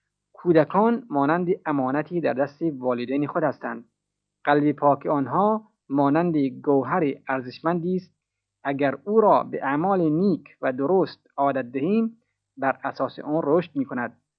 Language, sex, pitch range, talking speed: Persian, male, 135-170 Hz, 120 wpm